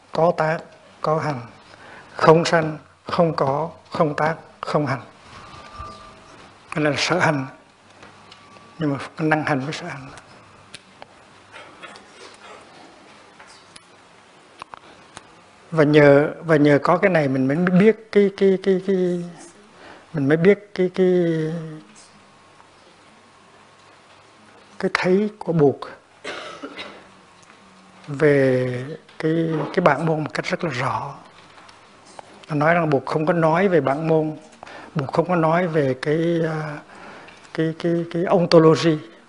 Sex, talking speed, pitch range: male, 115 wpm, 150-170 Hz